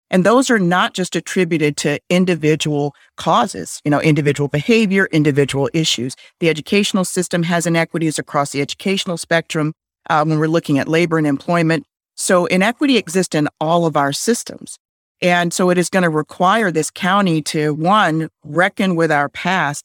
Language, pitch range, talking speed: English, 155-185 Hz, 165 wpm